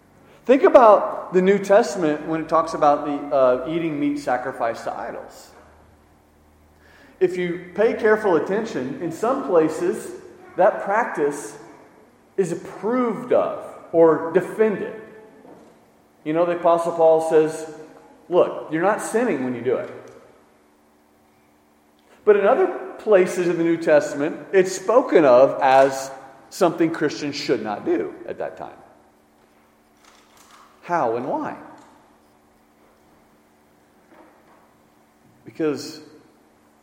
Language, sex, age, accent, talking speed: English, male, 40-59, American, 110 wpm